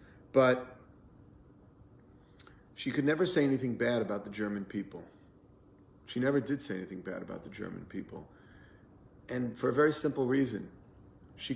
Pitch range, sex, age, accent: 100-125 Hz, male, 40-59, American